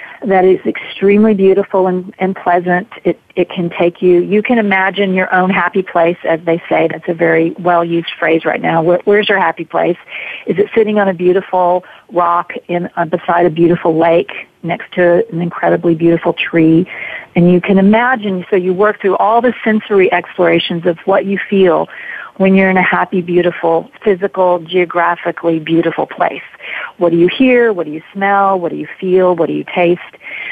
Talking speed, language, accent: 185 wpm, English, American